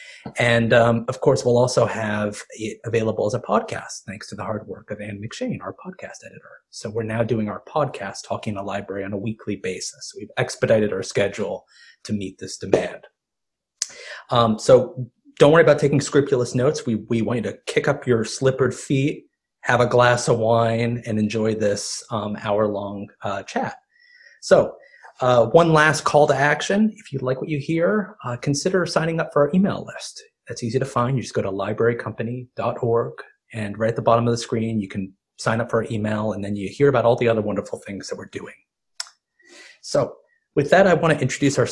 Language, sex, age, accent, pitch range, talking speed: English, male, 30-49, American, 110-140 Hz, 200 wpm